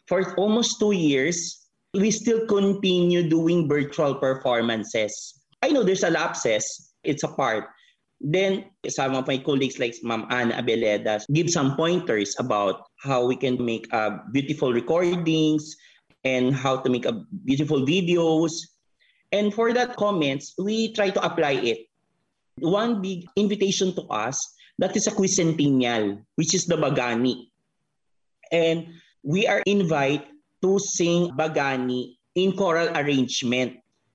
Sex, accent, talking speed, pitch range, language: male, Filipino, 135 wpm, 125-180 Hz, English